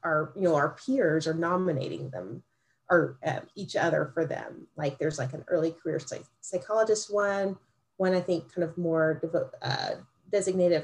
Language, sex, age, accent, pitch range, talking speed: English, female, 30-49, American, 150-175 Hz, 160 wpm